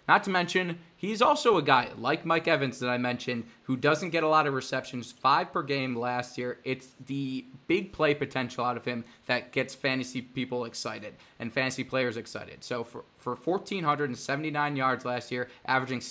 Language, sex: English, male